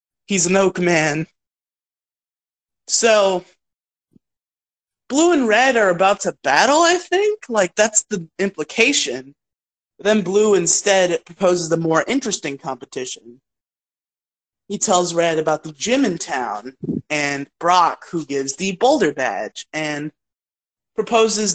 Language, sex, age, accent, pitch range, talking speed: English, male, 30-49, American, 145-190 Hz, 120 wpm